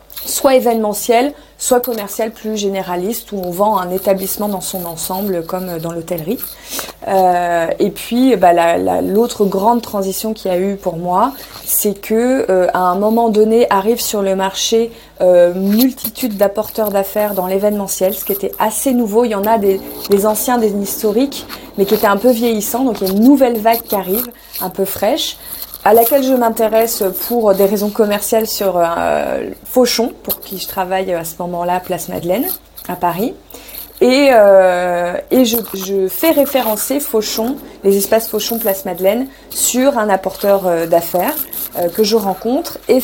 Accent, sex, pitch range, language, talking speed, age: French, female, 190-230 Hz, French, 175 wpm, 30-49